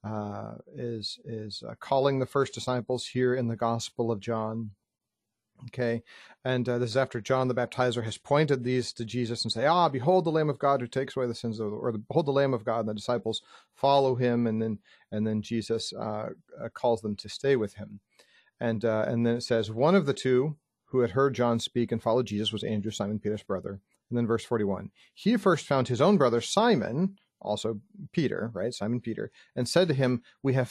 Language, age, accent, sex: English, 40-59, American, male